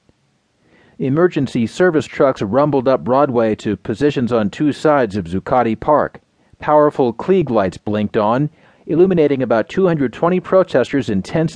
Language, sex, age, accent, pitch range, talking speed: English, male, 40-59, American, 110-150 Hz, 130 wpm